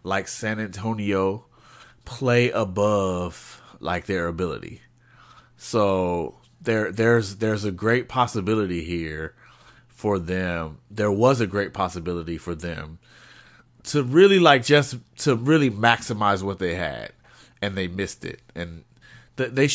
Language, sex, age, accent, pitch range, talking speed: English, male, 30-49, American, 100-155 Hz, 125 wpm